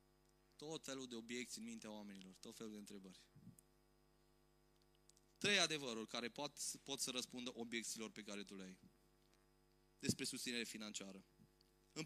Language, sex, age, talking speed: Romanian, male, 20-39, 140 wpm